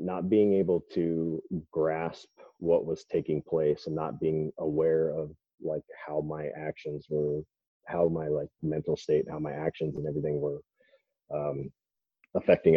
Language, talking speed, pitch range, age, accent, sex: English, 155 wpm, 75-90 Hz, 30-49, American, male